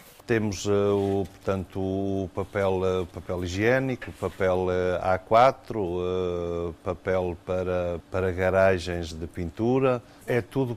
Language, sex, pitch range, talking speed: Portuguese, male, 95-110 Hz, 90 wpm